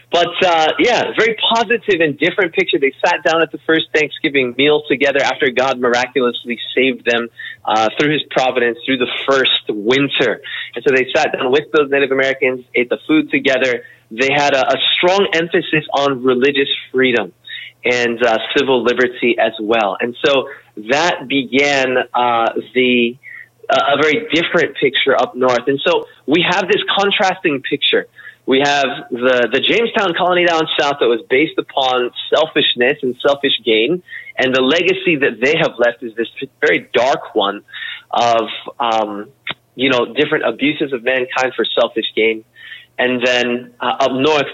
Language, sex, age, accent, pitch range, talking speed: English, male, 20-39, American, 125-155 Hz, 165 wpm